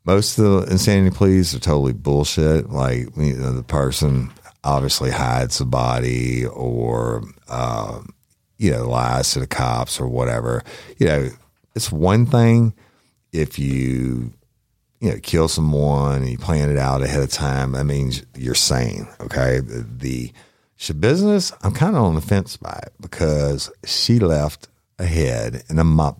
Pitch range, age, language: 65-95 Hz, 50-69, English